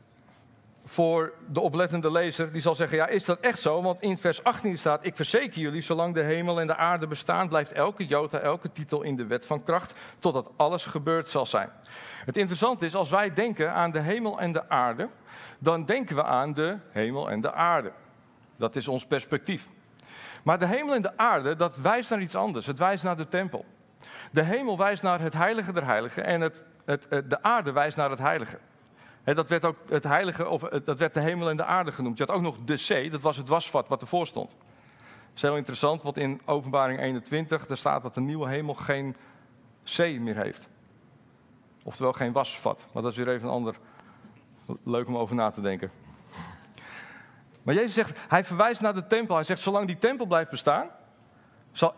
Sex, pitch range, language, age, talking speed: male, 140-180 Hz, Dutch, 50-69, 195 wpm